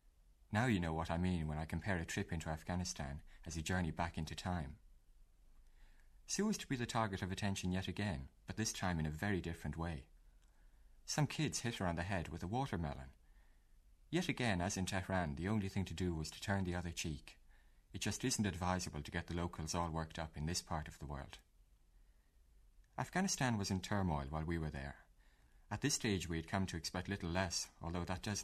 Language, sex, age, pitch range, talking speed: English, male, 30-49, 80-100 Hz, 215 wpm